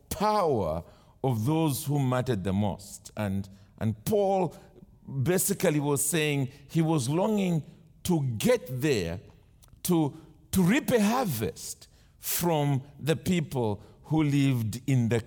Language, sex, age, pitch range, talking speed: English, male, 50-69, 105-165 Hz, 120 wpm